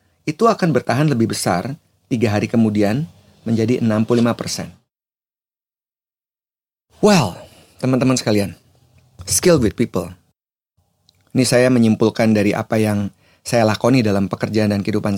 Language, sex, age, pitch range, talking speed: Indonesian, male, 30-49, 100-120 Hz, 110 wpm